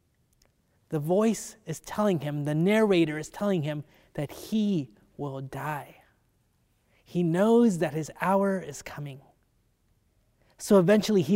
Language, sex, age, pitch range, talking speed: English, male, 20-39, 140-185 Hz, 125 wpm